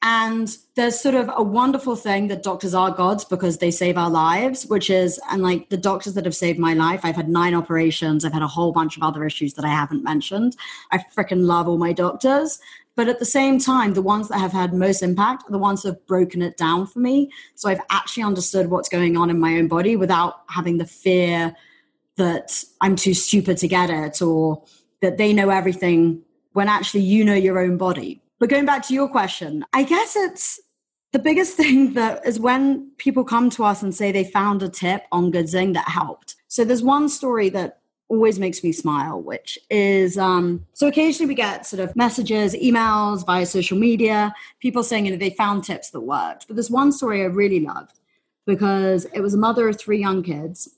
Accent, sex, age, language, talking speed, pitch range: British, female, 30-49, English, 215 wpm, 180-235 Hz